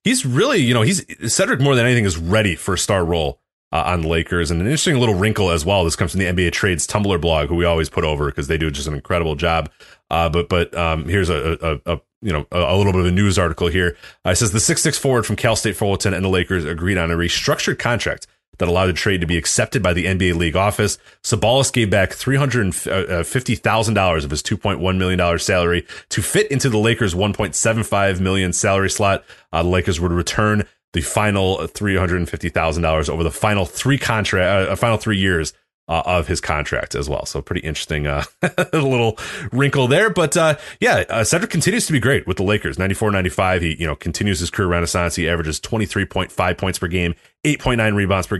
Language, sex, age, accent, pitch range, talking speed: English, male, 30-49, American, 85-110 Hz, 230 wpm